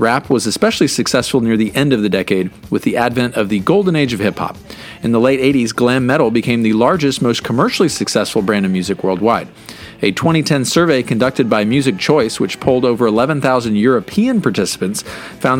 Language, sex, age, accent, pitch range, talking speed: English, male, 40-59, American, 115-160 Hz, 190 wpm